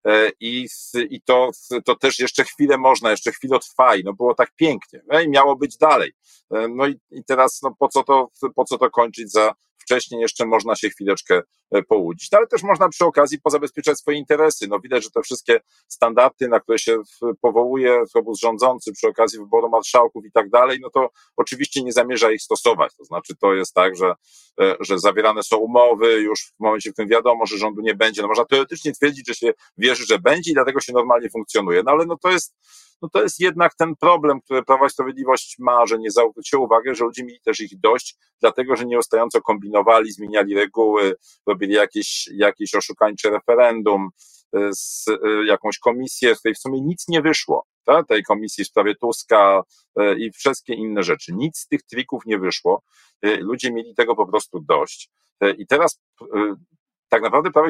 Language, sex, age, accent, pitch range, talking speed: Polish, male, 40-59, native, 115-155 Hz, 190 wpm